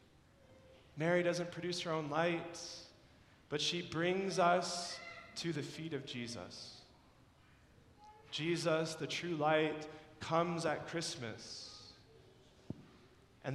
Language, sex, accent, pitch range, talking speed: English, male, American, 155-190 Hz, 100 wpm